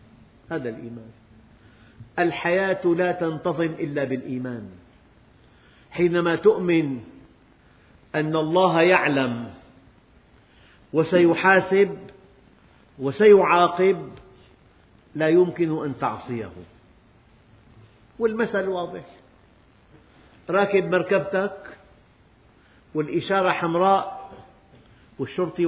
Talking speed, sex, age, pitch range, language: 60 wpm, male, 50-69, 125-185 Hz, Arabic